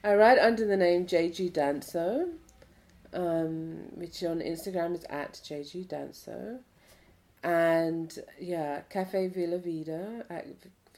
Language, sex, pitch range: German, female, 150-175 Hz